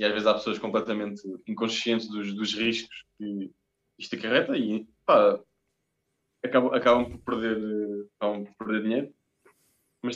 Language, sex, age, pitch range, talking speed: Portuguese, male, 20-39, 105-140 Hz, 140 wpm